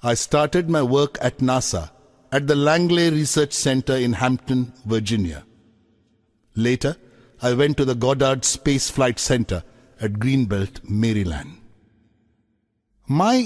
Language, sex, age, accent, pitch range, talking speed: Hindi, male, 60-79, native, 110-145 Hz, 120 wpm